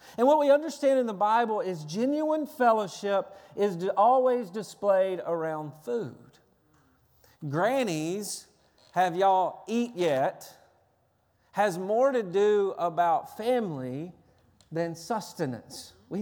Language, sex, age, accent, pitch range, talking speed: English, male, 40-59, American, 180-235 Hz, 105 wpm